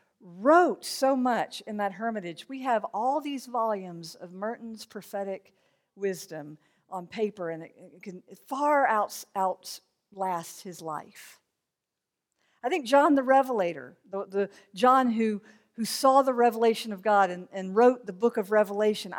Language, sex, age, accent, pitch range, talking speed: English, female, 50-69, American, 205-280 Hz, 140 wpm